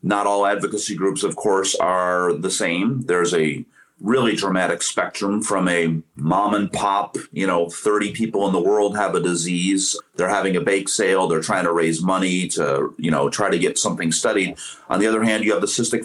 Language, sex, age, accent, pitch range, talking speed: English, male, 40-59, American, 85-100 Hz, 205 wpm